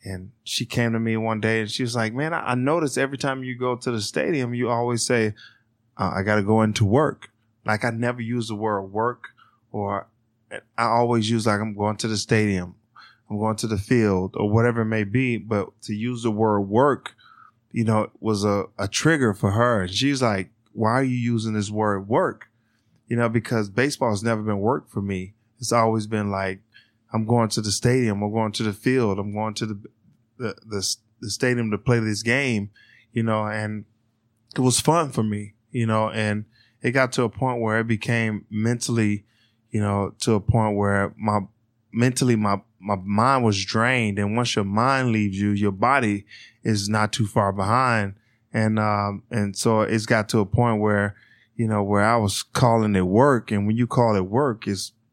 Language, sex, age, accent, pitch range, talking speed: English, male, 20-39, American, 105-120 Hz, 205 wpm